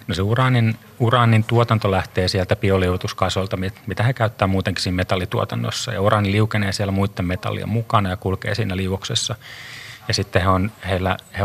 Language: Finnish